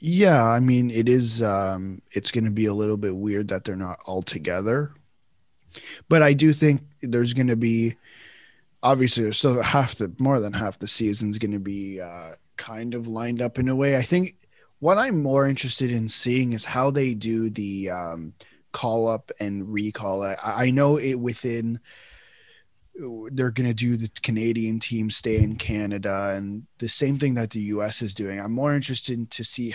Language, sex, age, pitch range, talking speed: English, male, 20-39, 110-135 Hz, 195 wpm